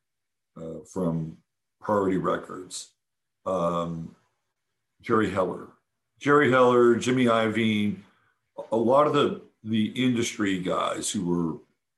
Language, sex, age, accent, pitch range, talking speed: English, male, 60-79, American, 100-125 Hz, 100 wpm